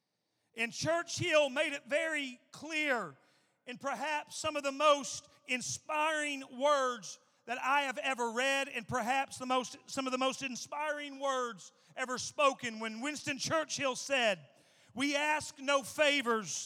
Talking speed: 140 wpm